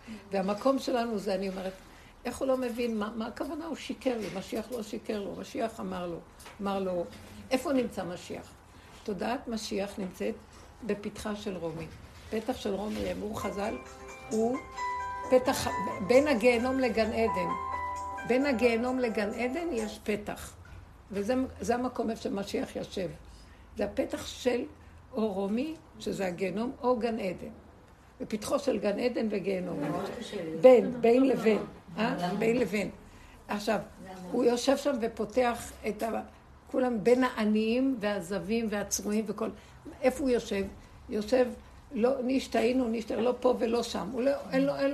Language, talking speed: Hebrew, 130 wpm